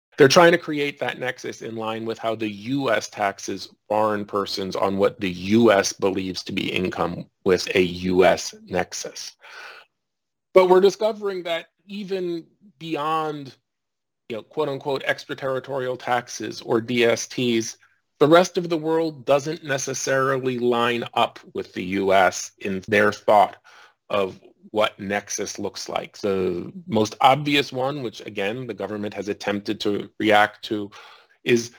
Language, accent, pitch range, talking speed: English, American, 110-145 Hz, 140 wpm